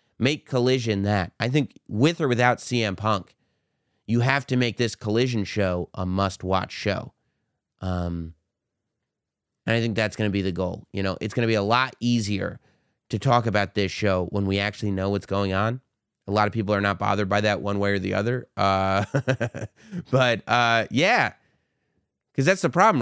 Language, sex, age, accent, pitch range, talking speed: English, male, 30-49, American, 100-130 Hz, 190 wpm